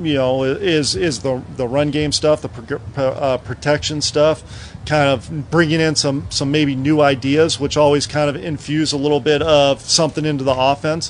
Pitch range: 135-160 Hz